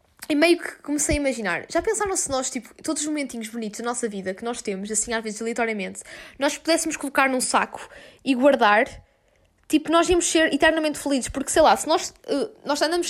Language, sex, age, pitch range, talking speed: Portuguese, female, 10-29, 225-290 Hz, 200 wpm